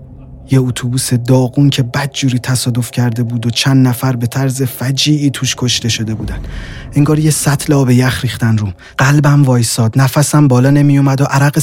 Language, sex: Persian, male